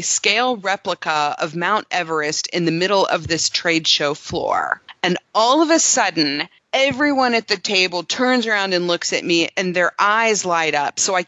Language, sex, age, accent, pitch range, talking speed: English, female, 30-49, American, 160-210 Hz, 185 wpm